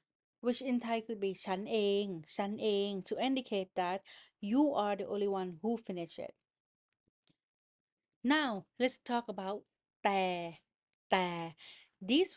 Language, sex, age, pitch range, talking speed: English, female, 30-49, 185-230 Hz, 100 wpm